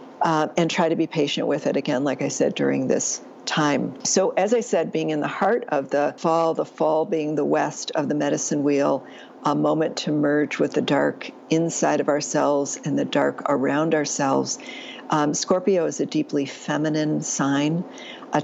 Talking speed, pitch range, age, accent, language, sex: 190 wpm, 150-170 Hz, 60-79, American, English, female